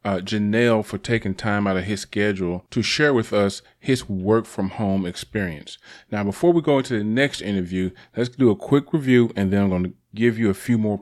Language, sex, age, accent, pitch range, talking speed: English, male, 30-49, American, 105-130 Hz, 225 wpm